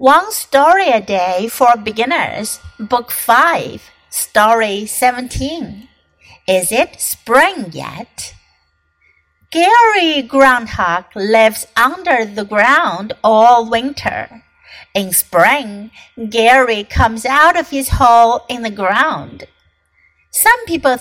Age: 50-69